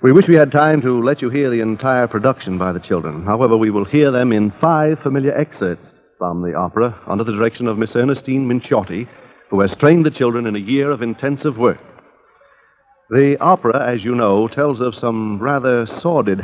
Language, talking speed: English, 200 wpm